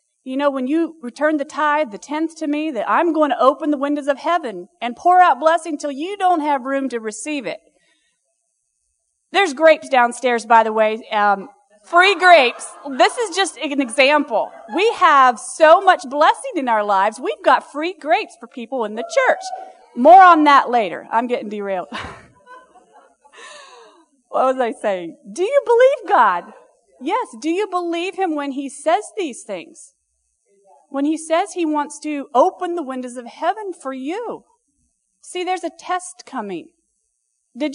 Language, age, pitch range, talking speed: English, 40-59, 250-340 Hz, 170 wpm